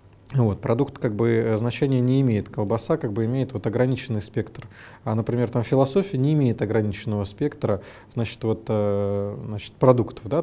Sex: male